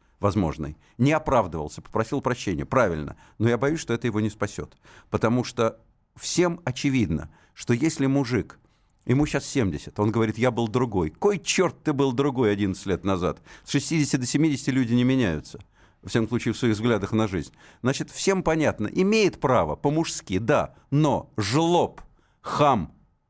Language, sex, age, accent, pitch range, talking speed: Russian, male, 50-69, native, 105-145 Hz, 160 wpm